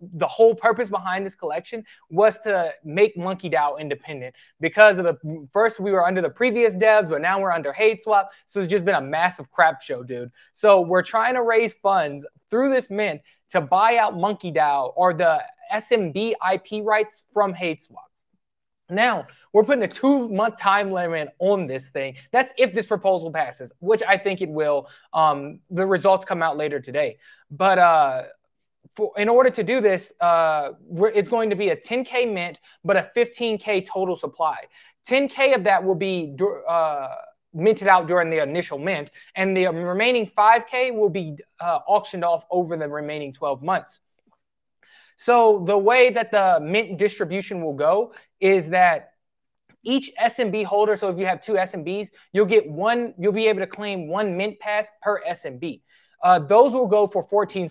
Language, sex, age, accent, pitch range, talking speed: English, male, 20-39, American, 175-220 Hz, 180 wpm